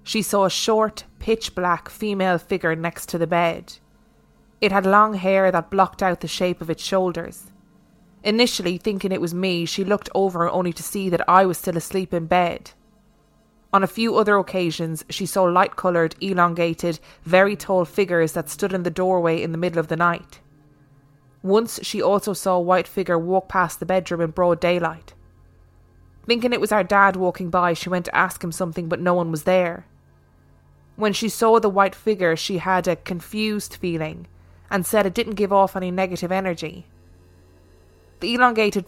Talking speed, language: 180 wpm, English